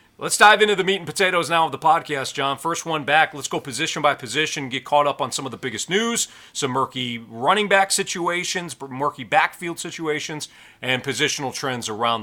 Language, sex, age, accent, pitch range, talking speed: English, male, 40-59, American, 125-160 Hz, 200 wpm